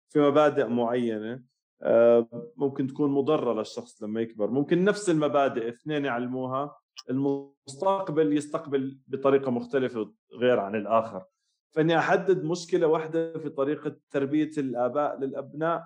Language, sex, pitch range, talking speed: Arabic, male, 120-160 Hz, 115 wpm